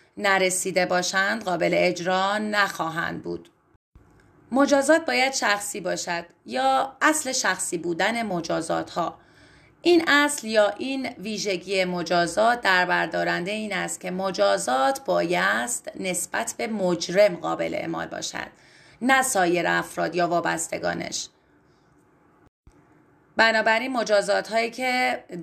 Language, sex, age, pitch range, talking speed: Persian, female, 30-49, 175-230 Hz, 95 wpm